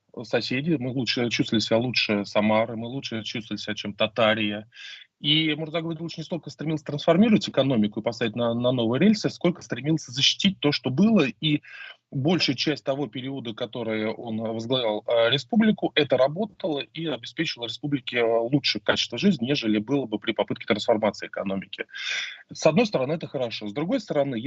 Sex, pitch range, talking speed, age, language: male, 115-155 Hz, 165 wpm, 20-39, Russian